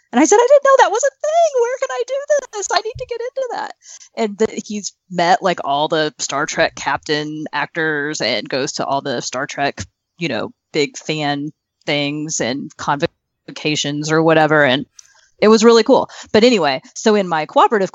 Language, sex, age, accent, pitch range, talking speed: English, female, 20-39, American, 155-220 Hz, 195 wpm